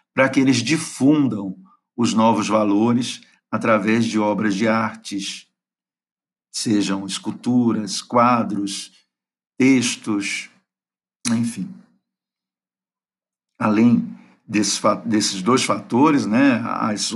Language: Portuguese